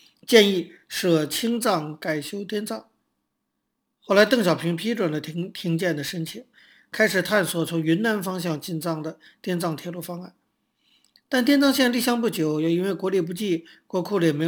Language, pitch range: Chinese, 165-215 Hz